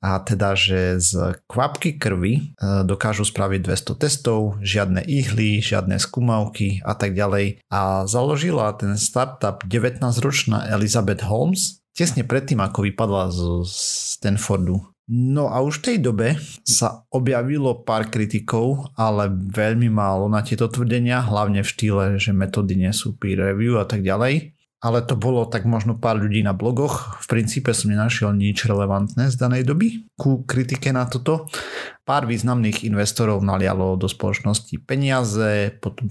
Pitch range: 100-125 Hz